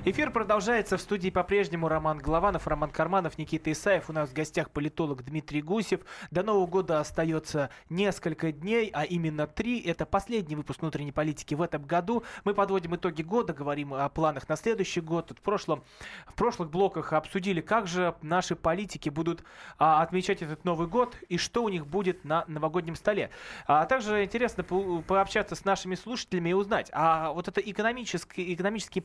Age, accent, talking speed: 20-39, native, 175 wpm